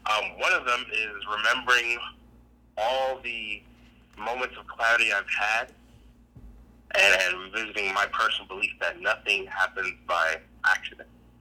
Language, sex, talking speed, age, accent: English, male, 125 wpm, 30-49, American